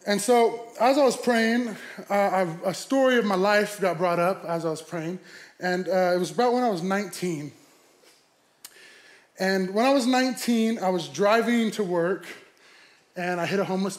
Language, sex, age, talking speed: English, male, 20-39, 190 wpm